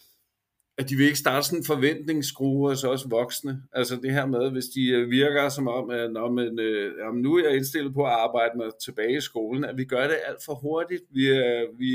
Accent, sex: native, male